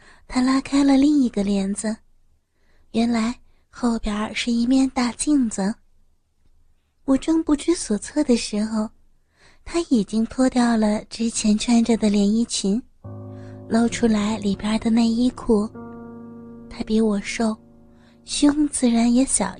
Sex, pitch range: female, 200-240 Hz